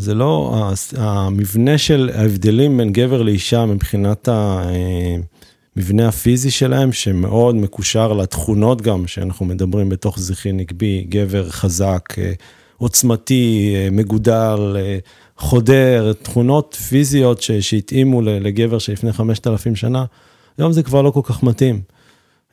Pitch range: 105-135 Hz